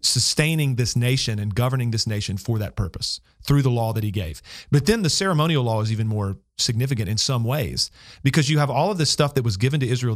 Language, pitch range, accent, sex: English, 115-150 Hz, American, male